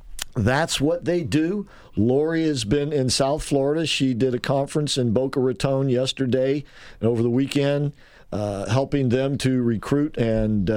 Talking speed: 155 wpm